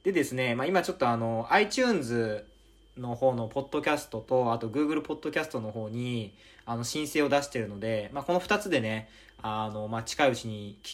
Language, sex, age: Japanese, male, 20-39